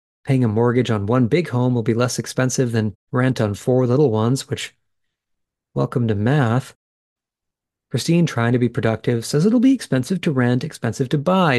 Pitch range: 110-135 Hz